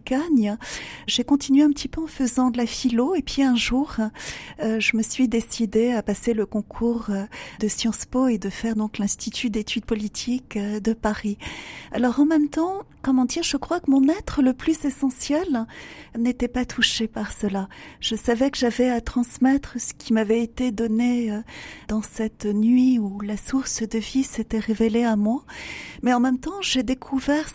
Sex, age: female, 40-59